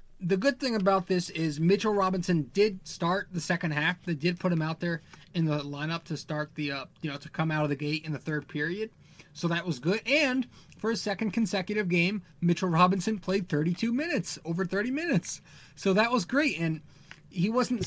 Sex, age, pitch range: male, 30-49, 150-185 Hz